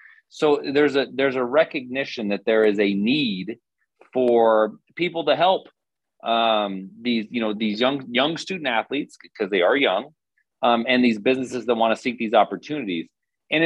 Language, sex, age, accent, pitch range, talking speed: English, male, 30-49, American, 100-130 Hz, 170 wpm